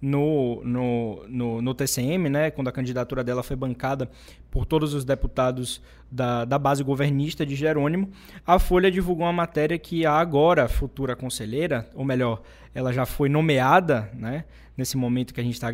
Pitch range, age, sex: 130-165 Hz, 20-39, male